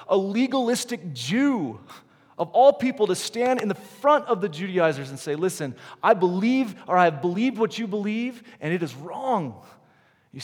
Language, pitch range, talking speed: English, 120-165 Hz, 180 wpm